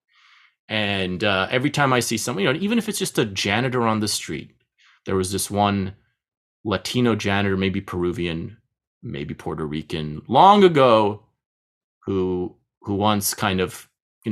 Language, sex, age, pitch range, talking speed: English, male, 30-49, 95-125 Hz, 155 wpm